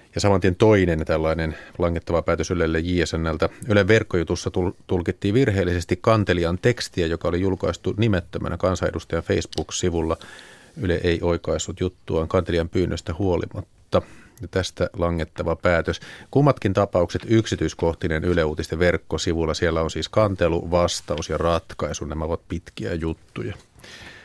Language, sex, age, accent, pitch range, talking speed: Finnish, male, 30-49, native, 85-105 Hz, 115 wpm